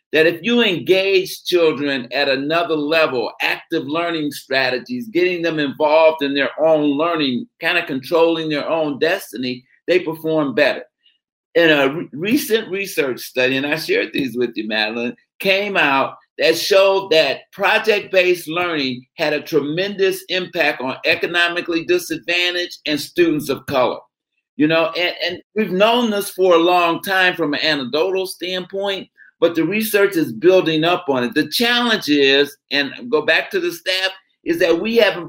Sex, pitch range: male, 155-200 Hz